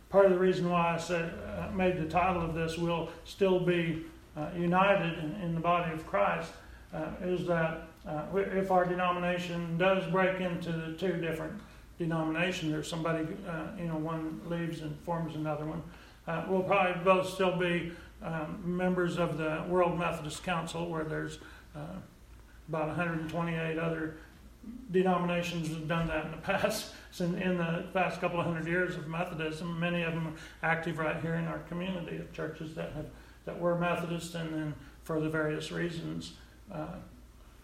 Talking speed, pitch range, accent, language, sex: 175 wpm, 160-175 Hz, American, English, male